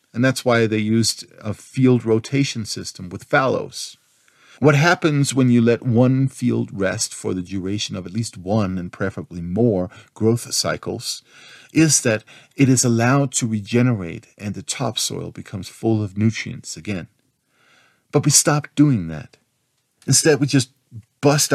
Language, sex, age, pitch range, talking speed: English, male, 50-69, 95-130 Hz, 155 wpm